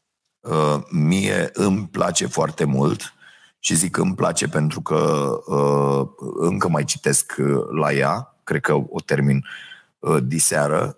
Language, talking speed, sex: Romanian, 125 wpm, male